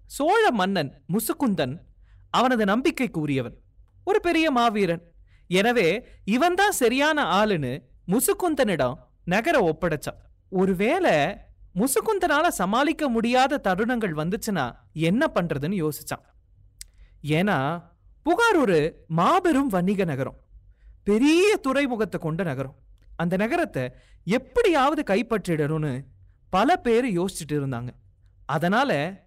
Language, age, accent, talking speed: Tamil, 30-49, native, 90 wpm